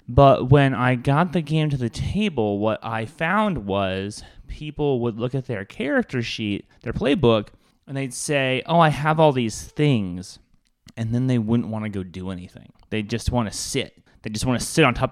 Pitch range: 110-135 Hz